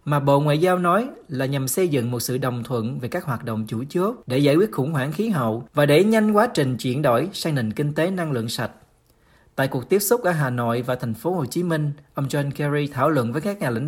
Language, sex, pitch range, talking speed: Vietnamese, male, 125-170 Hz, 270 wpm